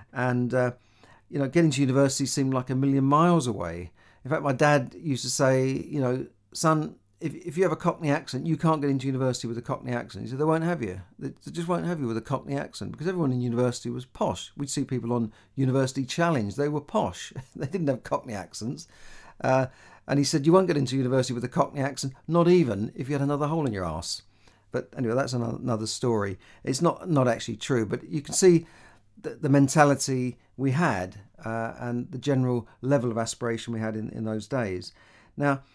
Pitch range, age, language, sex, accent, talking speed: 115-140 Hz, 50-69, English, male, British, 215 wpm